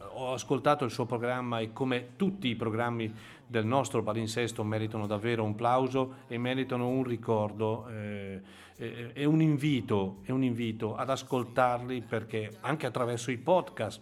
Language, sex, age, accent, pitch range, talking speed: Italian, male, 40-59, native, 110-135 Hz, 150 wpm